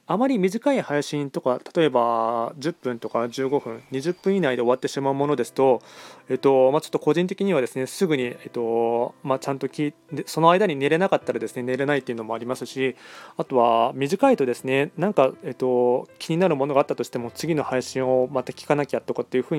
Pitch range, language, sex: 130-165 Hz, Japanese, male